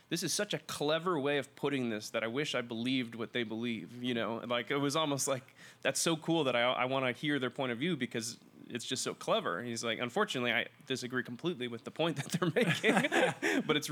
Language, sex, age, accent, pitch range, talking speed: English, male, 20-39, American, 115-140 Hz, 240 wpm